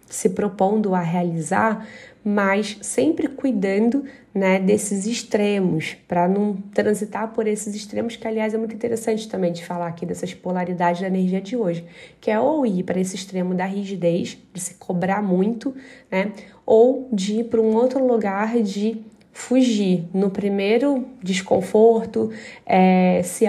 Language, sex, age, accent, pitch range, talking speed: Portuguese, female, 20-39, Brazilian, 185-220 Hz, 150 wpm